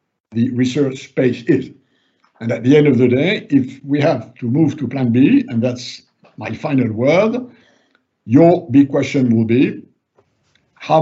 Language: English